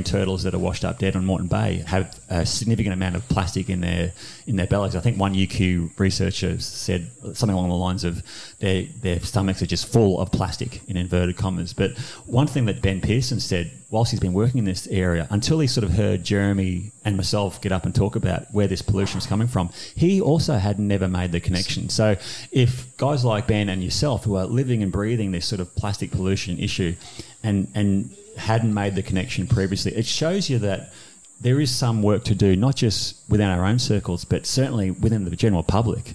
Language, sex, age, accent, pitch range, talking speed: English, male, 30-49, Australian, 95-115 Hz, 215 wpm